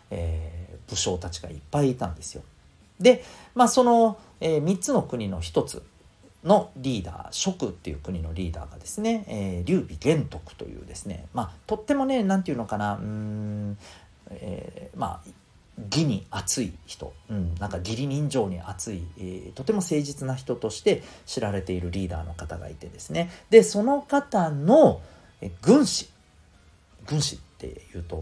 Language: Japanese